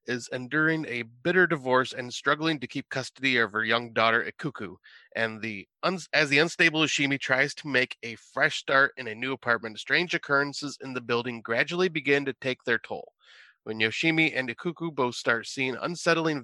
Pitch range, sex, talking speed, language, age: 115-150 Hz, male, 185 wpm, English, 30-49